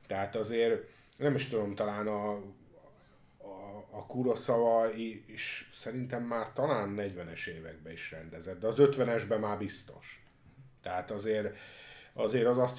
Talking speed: 140 wpm